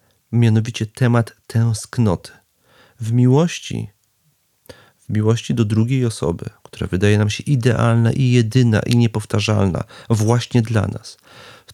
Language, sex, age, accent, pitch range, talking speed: Polish, male, 40-59, native, 105-125 Hz, 120 wpm